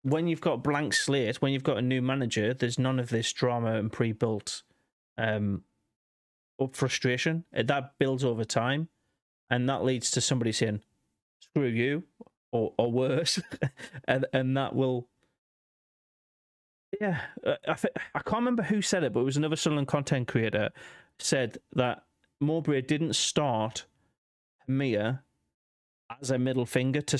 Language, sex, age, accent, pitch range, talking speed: English, male, 30-49, British, 120-145 Hz, 145 wpm